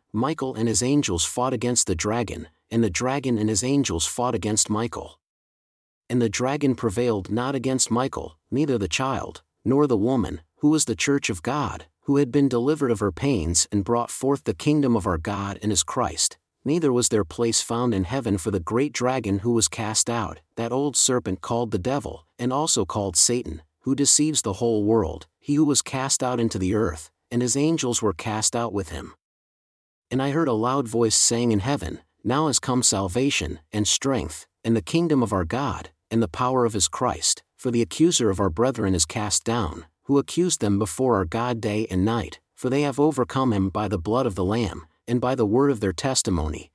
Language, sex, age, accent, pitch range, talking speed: English, male, 50-69, American, 100-130 Hz, 210 wpm